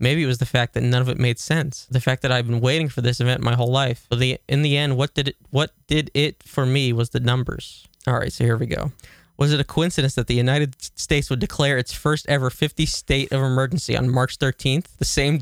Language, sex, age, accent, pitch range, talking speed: English, male, 20-39, American, 125-145 Hz, 260 wpm